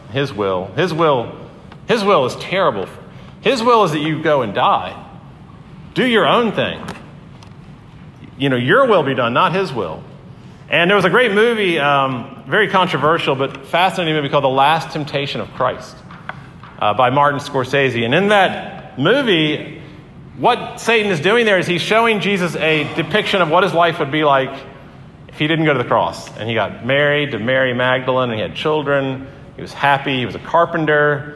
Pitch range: 135-175 Hz